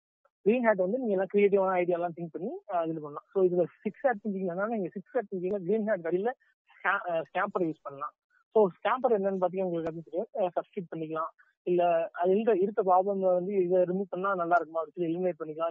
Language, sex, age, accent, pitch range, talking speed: Tamil, male, 20-39, native, 165-195 Hz, 80 wpm